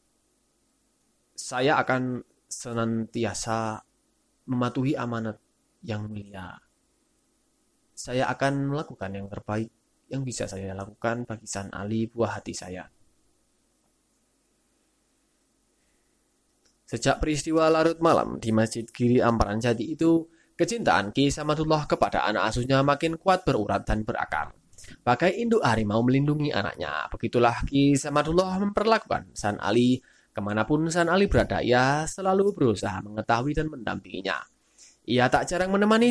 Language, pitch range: Indonesian, 110-160 Hz